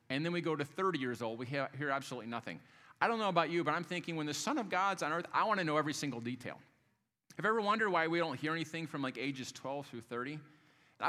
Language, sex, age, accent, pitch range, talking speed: English, male, 40-59, American, 125-165 Hz, 265 wpm